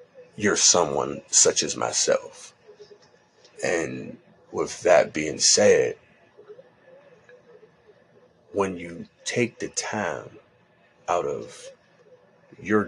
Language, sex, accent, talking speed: English, male, American, 85 wpm